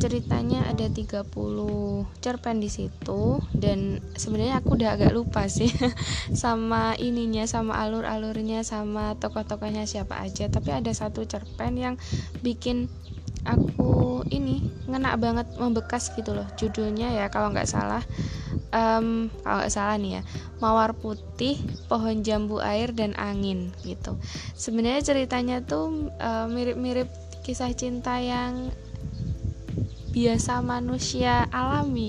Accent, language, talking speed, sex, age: native, Indonesian, 120 wpm, female, 10-29